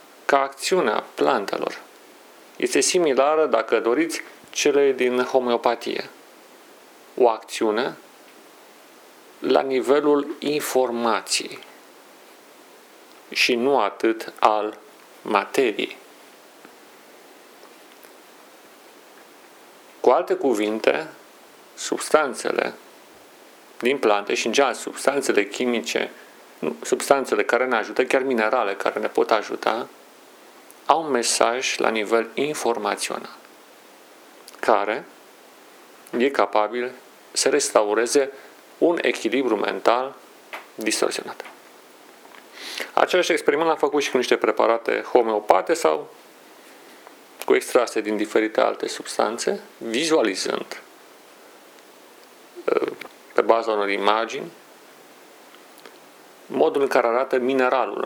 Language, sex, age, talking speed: Romanian, male, 40-59, 85 wpm